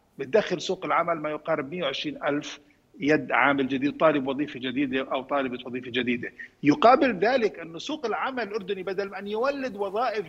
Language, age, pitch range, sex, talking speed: Arabic, 50-69, 155-220 Hz, male, 165 wpm